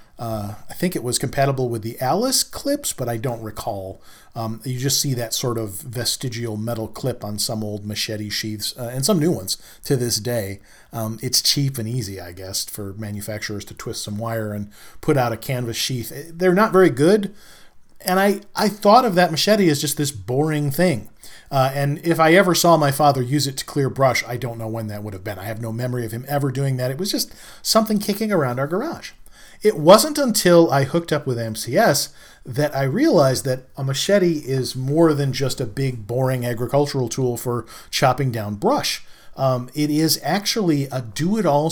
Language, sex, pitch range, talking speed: English, male, 115-165 Hz, 205 wpm